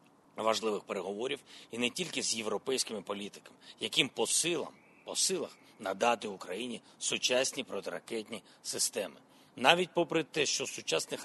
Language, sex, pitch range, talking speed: Ukrainian, male, 125-165 Hz, 115 wpm